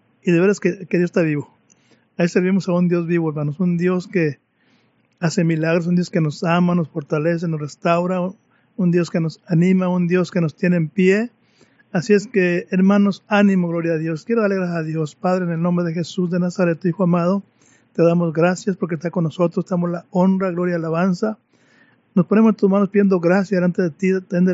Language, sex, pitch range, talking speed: Spanish, male, 165-190 Hz, 220 wpm